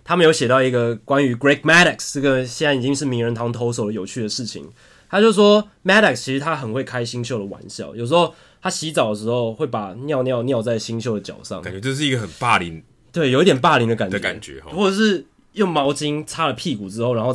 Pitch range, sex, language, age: 120-155 Hz, male, Chinese, 20-39